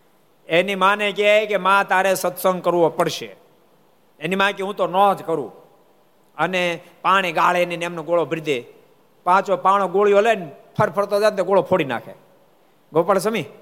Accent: native